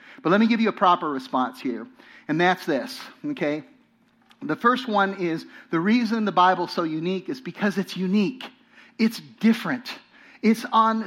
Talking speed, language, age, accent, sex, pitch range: 170 wpm, English, 50-69, American, male, 170-230 Hz